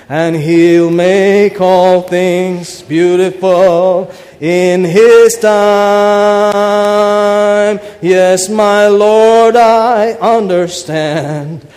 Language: English